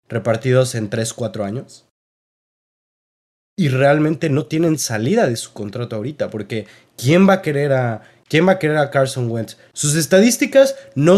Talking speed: 160 wpm